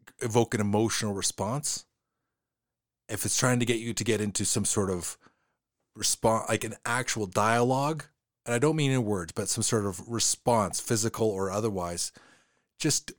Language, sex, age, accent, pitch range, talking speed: English, male, 30-49, American, 100-120 Hz, 165 wpm